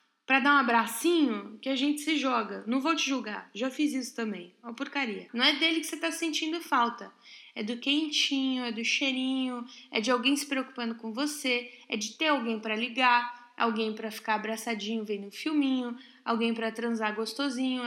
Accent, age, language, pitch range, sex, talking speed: Brazilian, 10-29, Portuguese, 225-310 Hz, female, 190 wpm